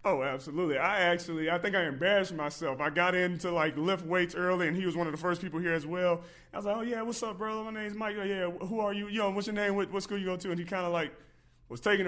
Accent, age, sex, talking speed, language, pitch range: American, 30-49, male, 305 wpm, English, 165-205 Hz